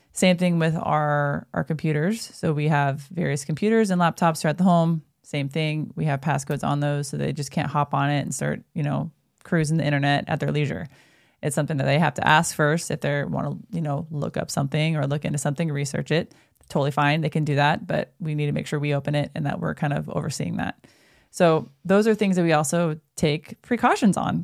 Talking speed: 235 wpm